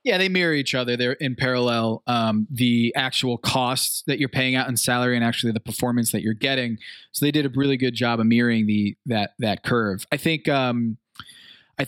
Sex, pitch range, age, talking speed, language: male, 120-150 Hz, 20-39, 210 wpm, English